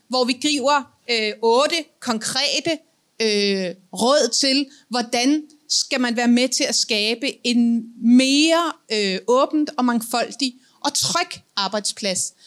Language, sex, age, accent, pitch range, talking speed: Danish, female, 30-49, native, 210-280 Hz, 125 wpm